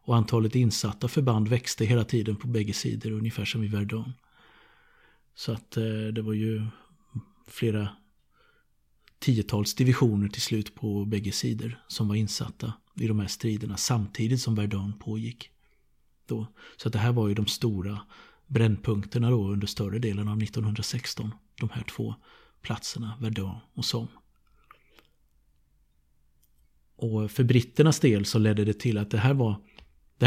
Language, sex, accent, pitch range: Swedish, male, native, 105-115 Hz